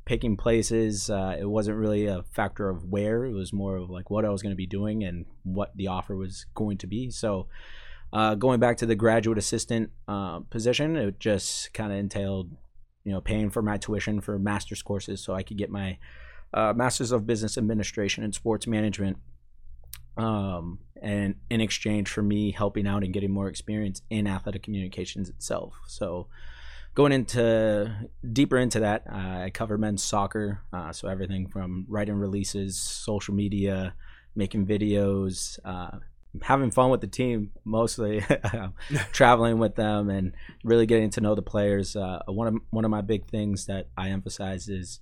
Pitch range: 95-110 Hz